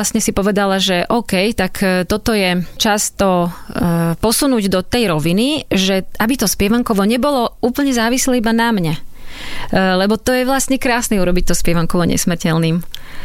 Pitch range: 180-215 Hz